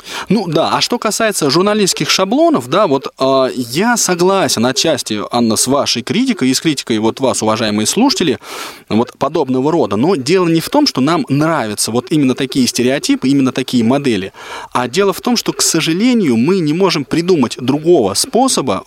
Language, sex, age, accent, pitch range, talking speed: Russian, male, 20-39, native, 120-170 Hz, 175 wpm